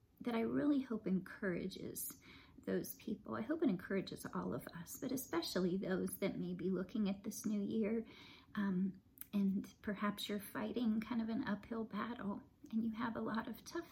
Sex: female